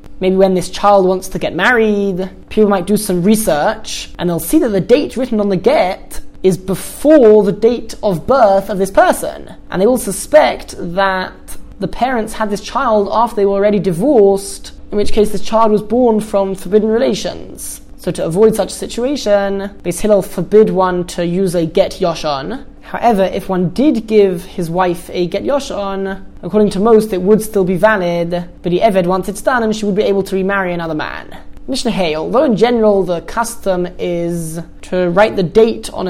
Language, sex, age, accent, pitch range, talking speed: English, male, 20-39, British, 185-225 Hz, 195 wpm